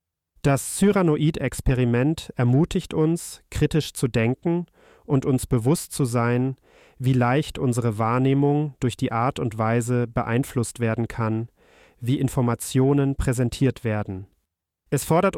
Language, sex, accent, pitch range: German, male, German, 115-140 Hz